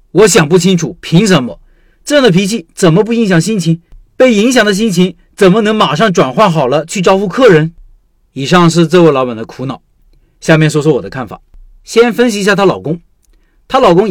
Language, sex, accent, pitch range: Chinese, male, native, 155-215 Hz